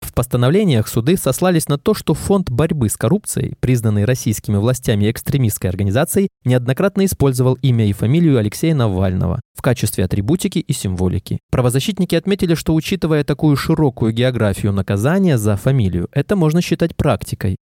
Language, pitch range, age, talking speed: Russian, 115-160 Hz, 20-39, 145 wpm